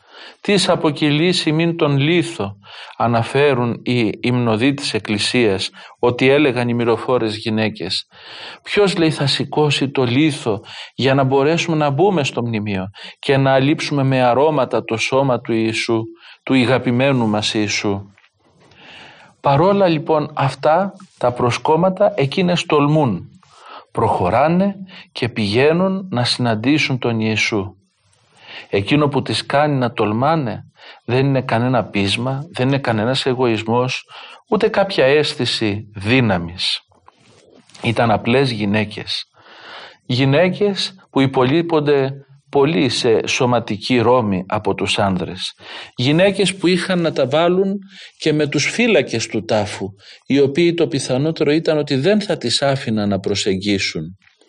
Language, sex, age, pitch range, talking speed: Greek, male, 40-59, 110-155 Hz, 120 wpm